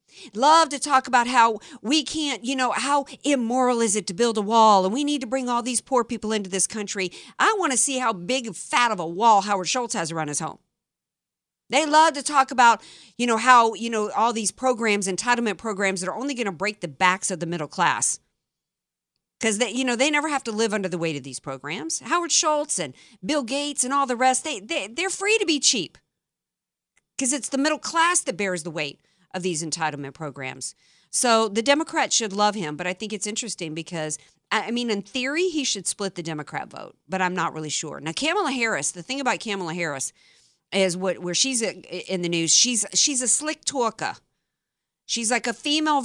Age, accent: 50-69, American